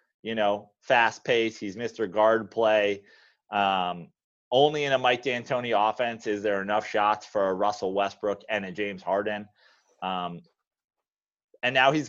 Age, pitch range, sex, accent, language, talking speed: 30-49, 110-135 Hz, male, American, English, 155 wpm